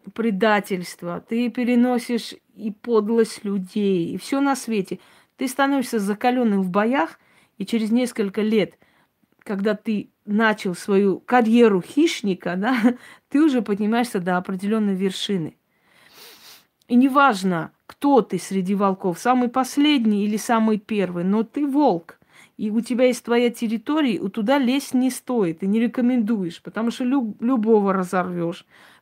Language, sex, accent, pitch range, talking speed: Russian, female, native, 195-240 Hz, 130 wpm